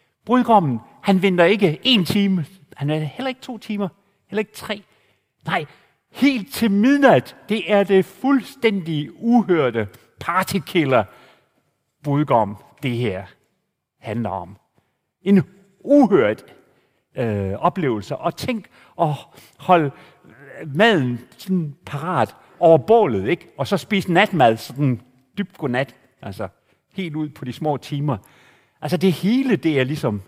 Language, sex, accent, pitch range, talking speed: Danish, male, native, 115-185 Hz, 125 wpm